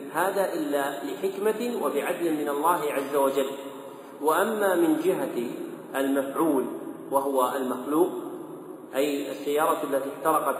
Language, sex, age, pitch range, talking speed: Arabic, male, 40-59, 135-160 Hz, 100 wpm